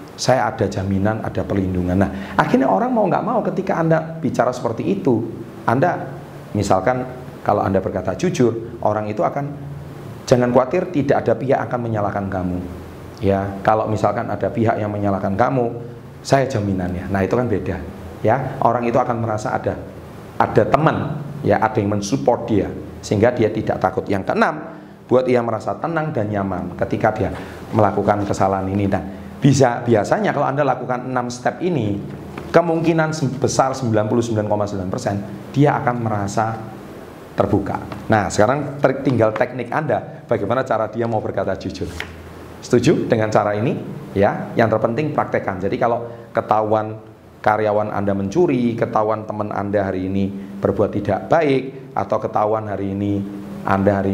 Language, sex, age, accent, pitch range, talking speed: Indonesian, male, 30-49, native, 100-125 Hz, 145 wpm